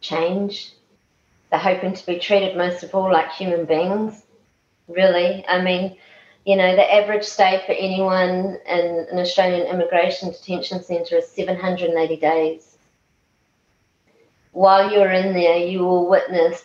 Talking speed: 135 wpm